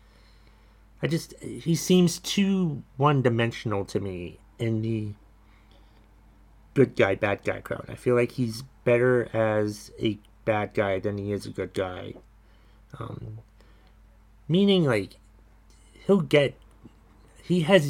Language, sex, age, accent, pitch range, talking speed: English, male, 30-49, American, 105-130 Hz, 125 wpm